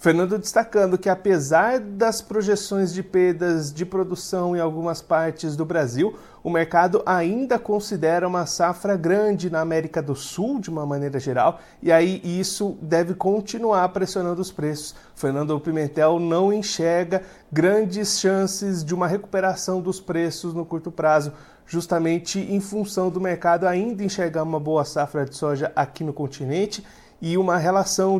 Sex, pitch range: male, 160-190 Hz